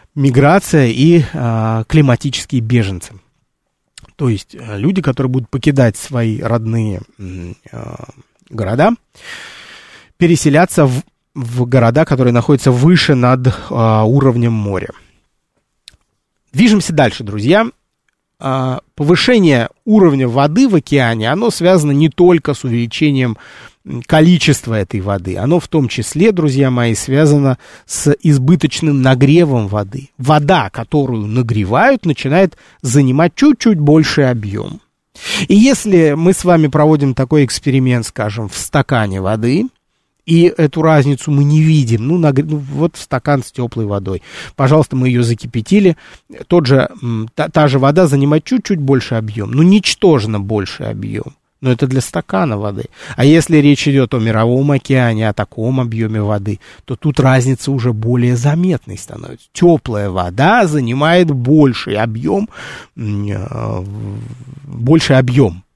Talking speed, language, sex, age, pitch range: 125 wpm, Russian, male, 30-49, 115-155 Hz